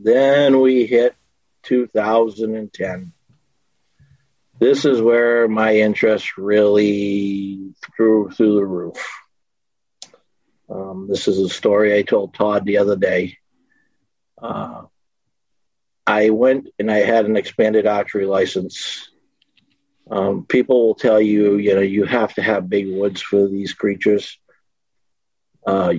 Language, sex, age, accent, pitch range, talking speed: English, male, 50-69, American, 100-110 Hz, 120 wpm